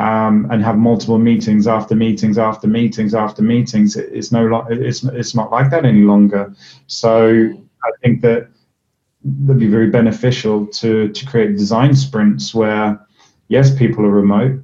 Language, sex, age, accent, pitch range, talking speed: English, male, 30-49, British, 110-130 Hz, 155 wpm